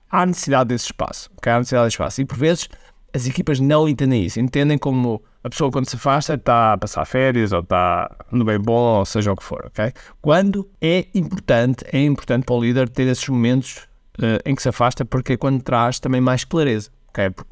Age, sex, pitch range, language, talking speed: 50-69, male, 130-180 Hz, Portuguese, 210 wpm